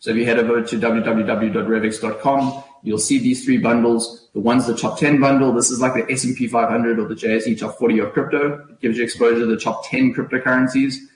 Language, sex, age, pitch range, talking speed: English, male, 20-39, 110-140 Hz, 215 wpm